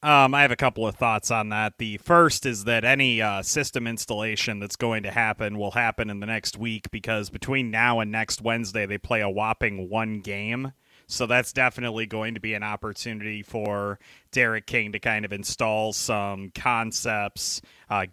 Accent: American